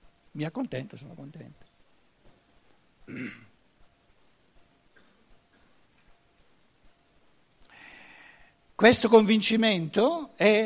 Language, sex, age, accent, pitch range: Italian, male, 60-79, native, 170-230 Hz